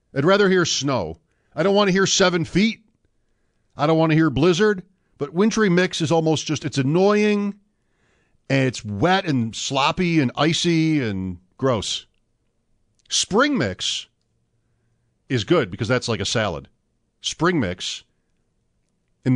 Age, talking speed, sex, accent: 50-69, 145 wpm, male, American